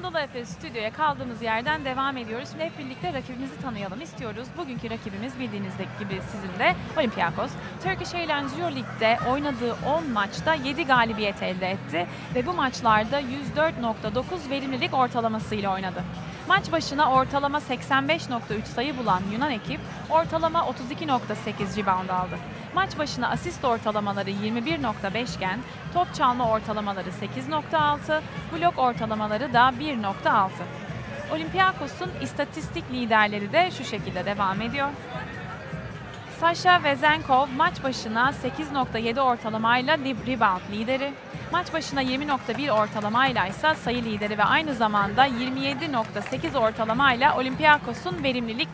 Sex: female